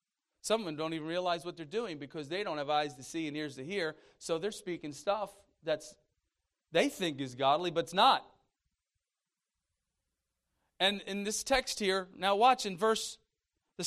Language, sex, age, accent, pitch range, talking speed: English, male, 40-59, American, 155-210 Hz, 180 wpm